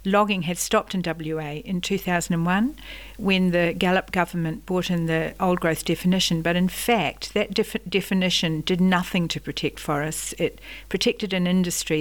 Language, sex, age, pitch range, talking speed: English, female, 60-79, 170-200 Hz, 160 wpm